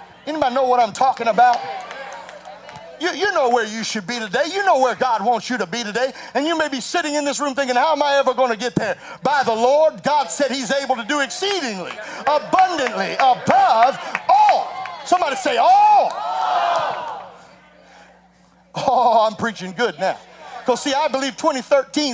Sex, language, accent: male, English, American